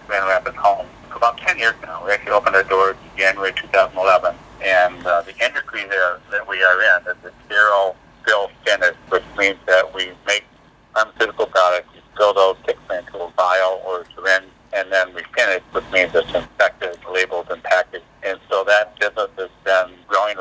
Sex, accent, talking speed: male, American, 190 wpm